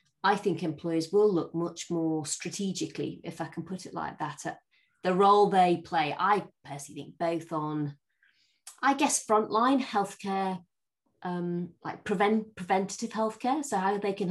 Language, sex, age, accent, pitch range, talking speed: English, female, 30-49, British, 160-205 Hz, 160 wpm